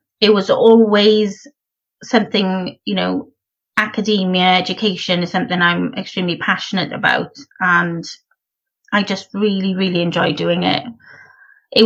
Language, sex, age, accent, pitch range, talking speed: English, female, 30-49, British, 185-235 Hz, 115 wpm